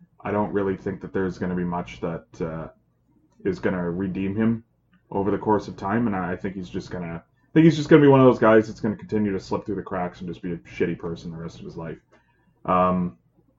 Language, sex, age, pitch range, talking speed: English, male, 20-39, 90-120 Hz, 265 wpm